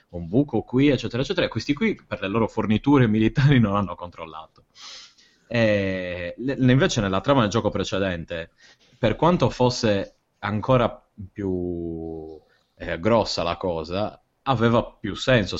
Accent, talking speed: native, 130 wpm